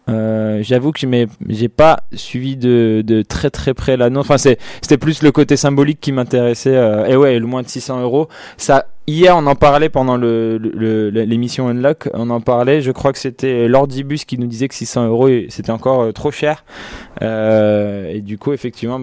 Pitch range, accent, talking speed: 110-130 Hz, French, 195 wpm